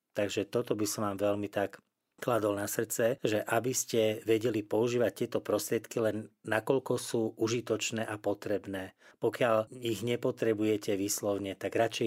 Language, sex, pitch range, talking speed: Slovak, male, 100-110 Hz, 145 wpm